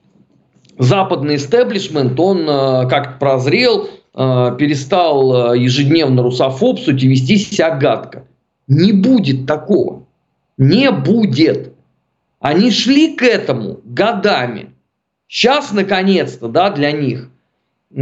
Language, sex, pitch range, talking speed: Russian, male, 135-205 Hz, 95 wpm